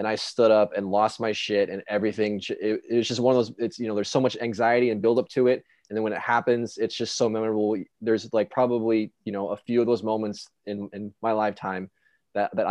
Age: 20-39